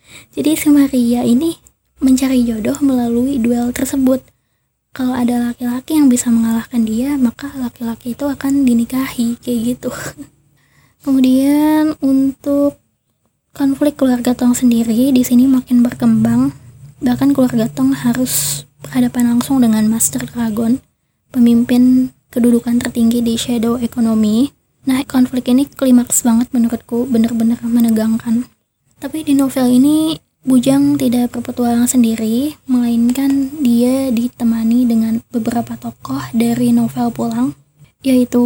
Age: 20-39